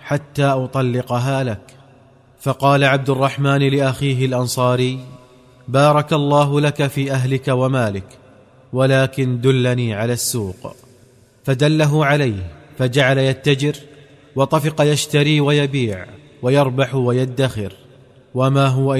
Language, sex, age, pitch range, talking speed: Arabic, male, 30-49, 125-140 Hz, 90 wpm